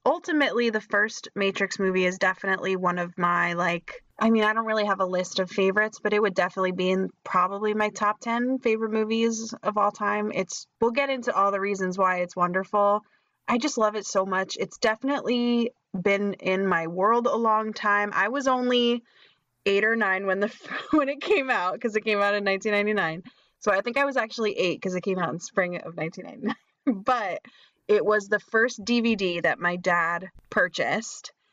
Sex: female